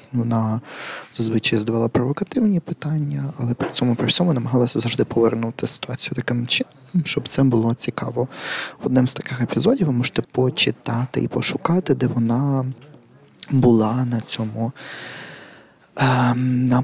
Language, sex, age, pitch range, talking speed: Ukrainian, male, 20-39, 115-135 Hz, 125 wpm